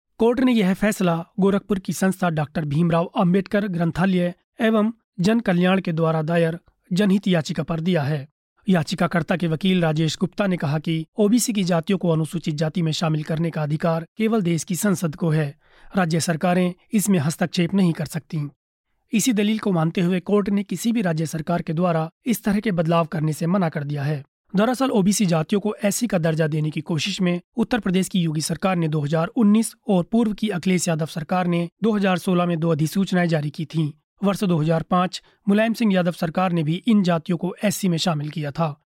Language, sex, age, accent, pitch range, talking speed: Hindi, male, 30-49, native, 165-200 Hz, 195 wpm